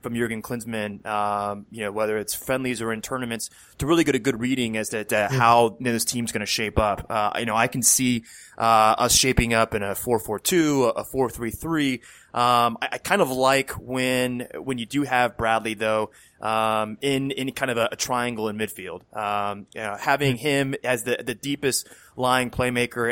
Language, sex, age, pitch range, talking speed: English, male, 20-39, 110-130 Hz, 210 wpm